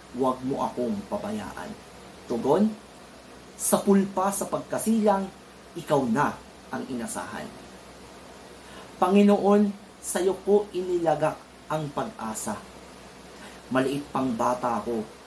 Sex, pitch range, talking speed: male, 135-205 Hz, 90 wpm